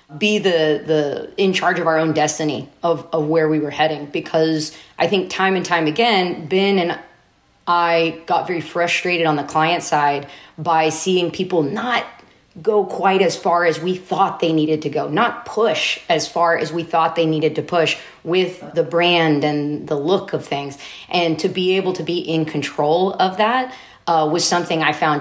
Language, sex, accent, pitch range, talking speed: English, female, American, 155-185 Hz, 195 wpm